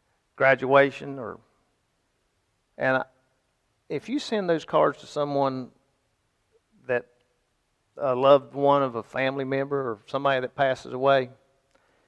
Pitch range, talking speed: 130-175 Hz, 115 wpm